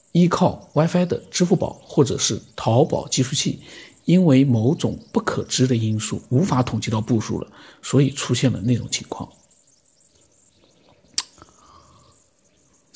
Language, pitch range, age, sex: Chinese, 115-165 Hz, 50-69, male